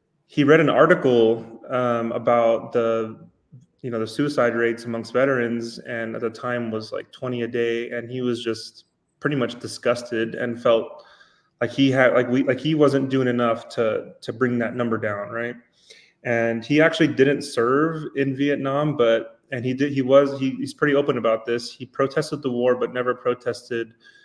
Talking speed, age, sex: 180 wpm, 20-39, male